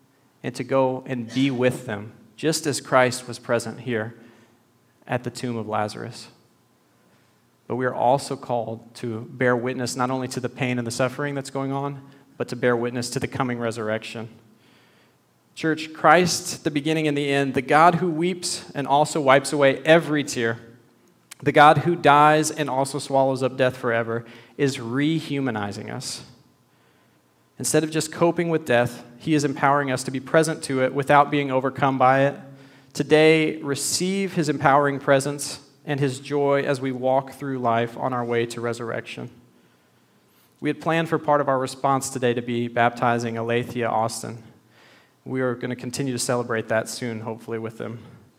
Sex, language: male, English